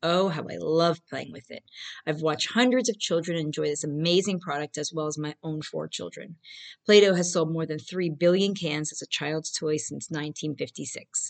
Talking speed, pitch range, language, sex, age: 195 wpm, 155-205 Hz, English, female, 40-59